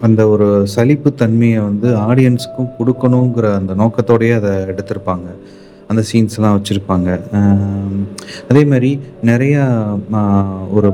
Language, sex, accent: Tamil, male, native